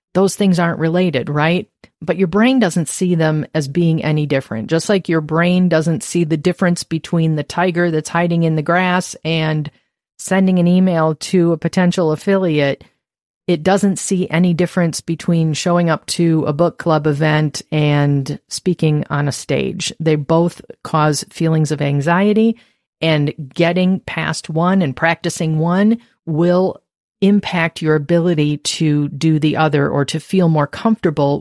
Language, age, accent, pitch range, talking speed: English, 40-59, American, 150-180 Hz, 160 wpm